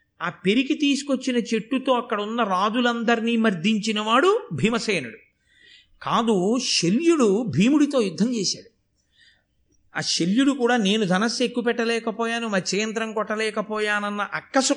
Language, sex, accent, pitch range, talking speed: Telugu, male, native, 190-255 Hz, 100 wpm